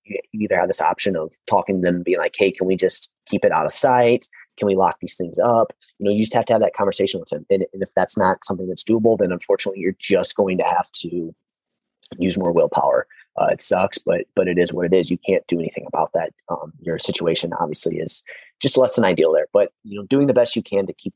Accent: American